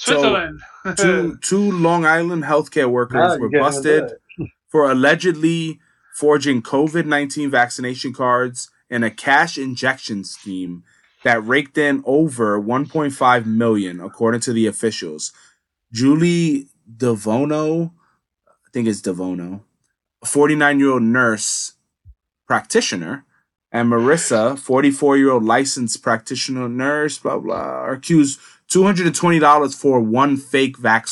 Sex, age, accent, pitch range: male, 20-39, American, 115-150 Hz